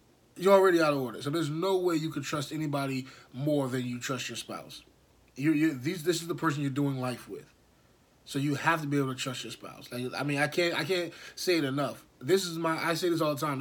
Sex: male